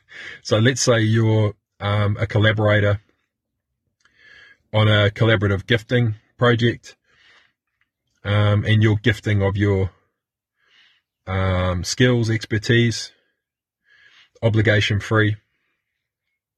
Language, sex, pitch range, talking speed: English, male, 105-125 Hz, 80 wpm